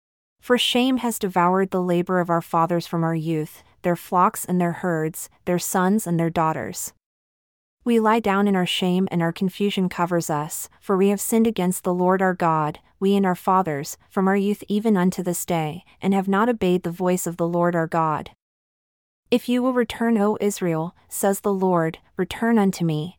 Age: 30-49